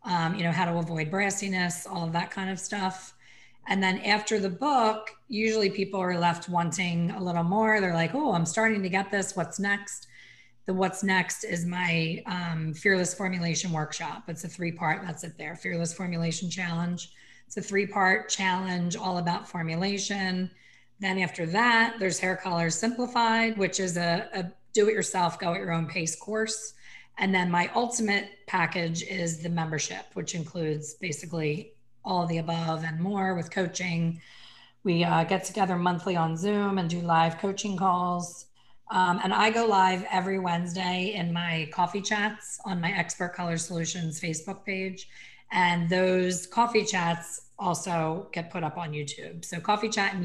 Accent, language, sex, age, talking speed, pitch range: American, English, female, 30-49, 165 wpm, 170-195 Hz